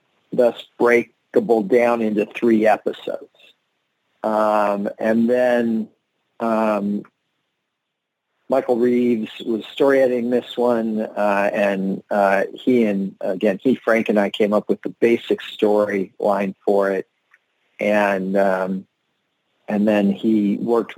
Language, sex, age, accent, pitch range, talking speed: English, male, 50-69, American, 105-120 Hz, 120 wpm